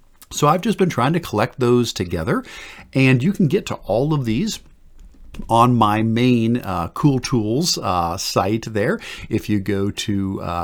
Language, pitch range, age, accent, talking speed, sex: English, 100-120 Hz, 50-69, American, 175 wpm, male